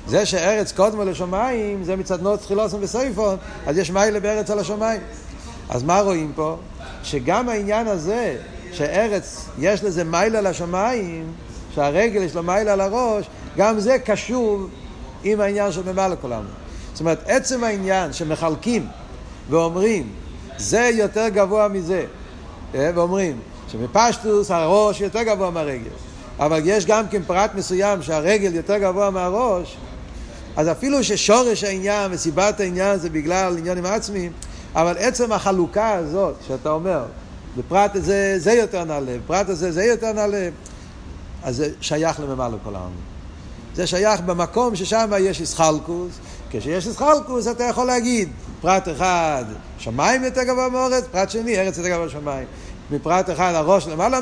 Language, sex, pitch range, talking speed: Hebrew, male, 165-215 Hz, 140 wpm